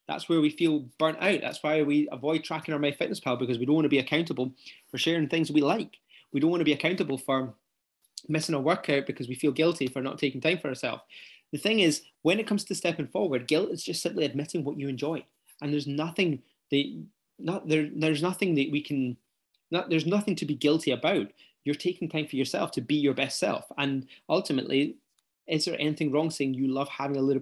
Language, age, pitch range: English, 20-39, 140-170 Hz